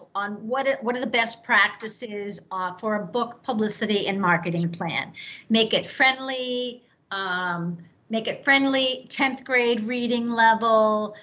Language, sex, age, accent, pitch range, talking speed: English, female, 50-69, American, 200-240 Hz, 145 wpm